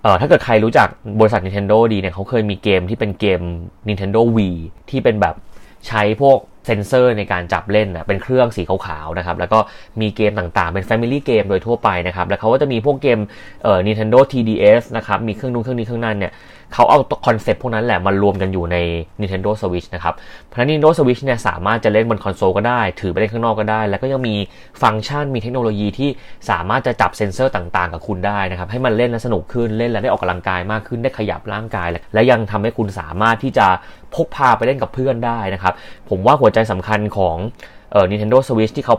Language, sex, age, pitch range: Thai, male, 20-39, 95-120 Hz